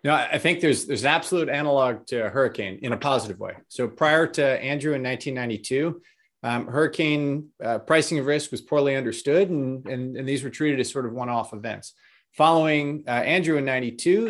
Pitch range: 125-155 Hz